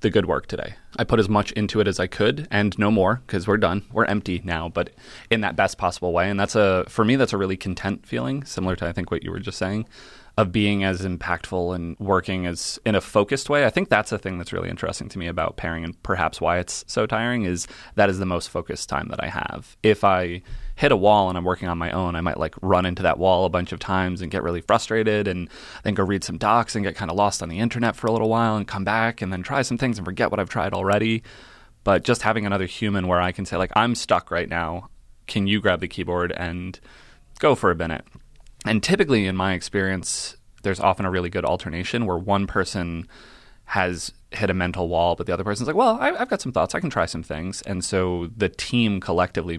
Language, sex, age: English, male, 20-39